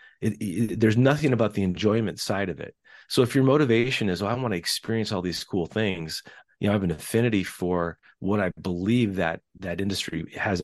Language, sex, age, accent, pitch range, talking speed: English, male, 30-49, American, 95-115 Hz, 215 wpm